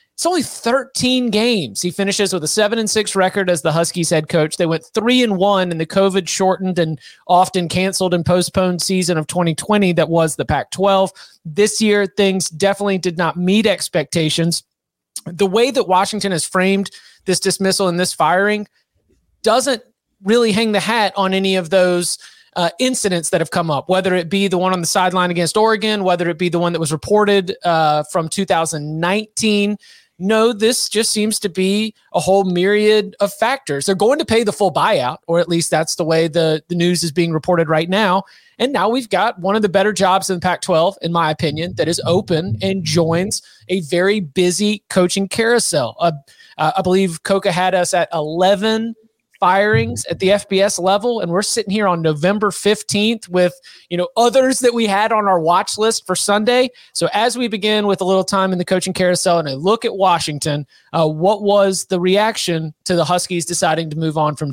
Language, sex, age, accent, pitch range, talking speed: English, male, 30-49, American, 170-205 Hz, 195 wpm